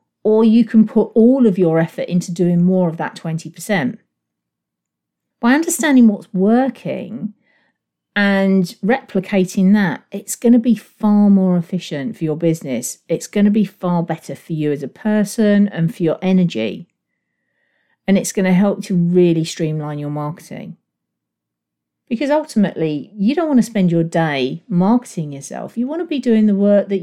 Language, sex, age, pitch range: English, female, 50-69, 160-205 Hz